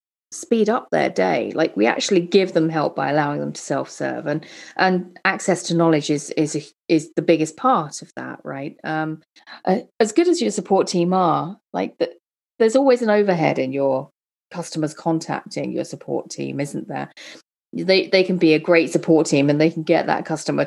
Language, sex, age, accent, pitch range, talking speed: English, female, 30-49, British, 155-190 Hz, 200 wpm